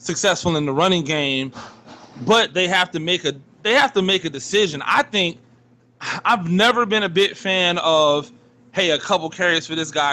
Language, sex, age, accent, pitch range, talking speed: English, male, 20-39, American, 145-190 Hz, 195 wpm